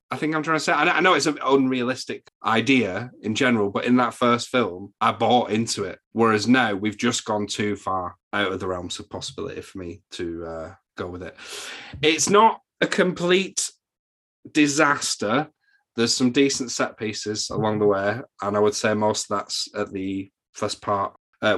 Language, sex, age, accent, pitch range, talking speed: English, male, 30-49, British, 105-130 Hz, 190 wpm